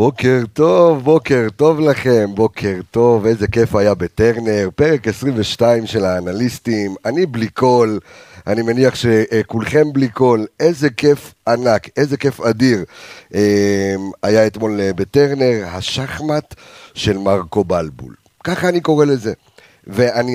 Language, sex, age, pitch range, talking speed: Hebrew, male, 50-69, 110-140 Hz, 120 wpm